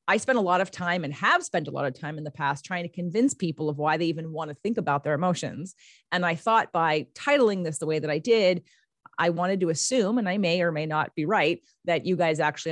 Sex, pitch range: female, 155-215 Hz